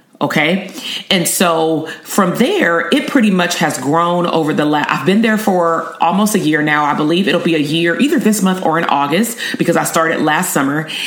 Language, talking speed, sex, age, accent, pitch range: English, 205 wpm, female, 30-49, American, 155-195 Hz